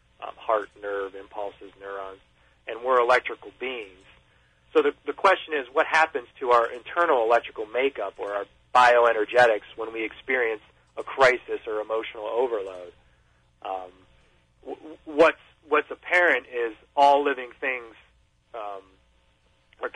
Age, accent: 40-59, American